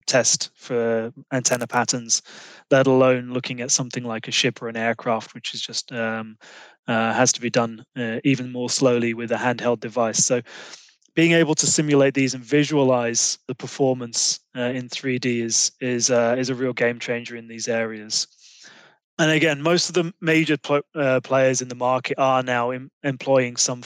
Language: English